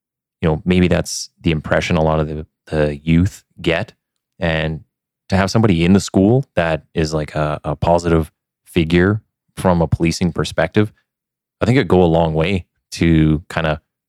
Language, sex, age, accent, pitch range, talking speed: English, male, 20-39, American, 80-90 Hz, 175 wpm